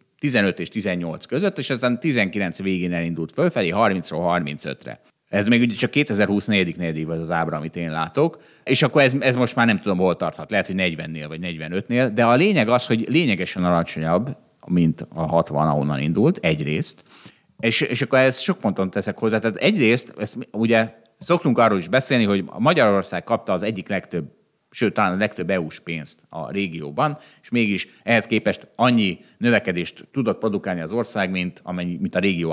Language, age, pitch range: Hungarian, 30-49, 85-135 Hz